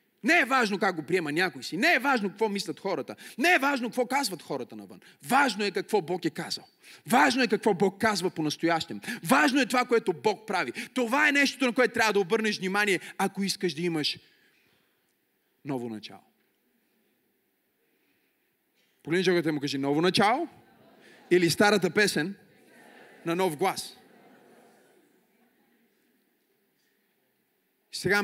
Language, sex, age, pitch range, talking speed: Bulgarian, male, 30-49, 195-330 Hz, 140 wpm